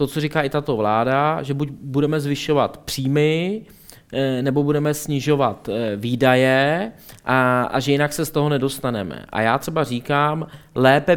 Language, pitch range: Czech, 130-155 Hz